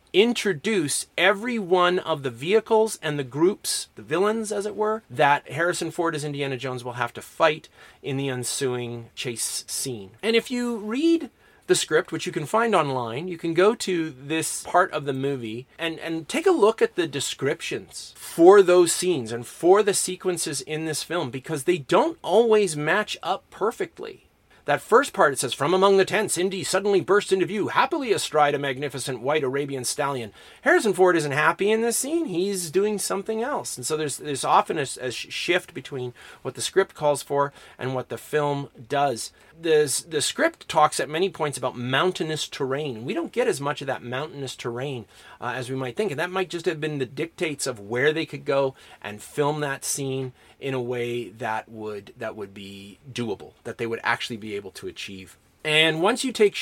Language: English